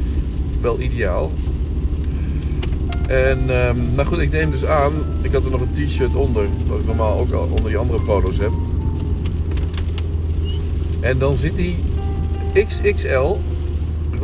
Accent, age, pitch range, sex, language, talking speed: Dutch, 50-69, 75-85 Hz, male, Dutch, 140 wpm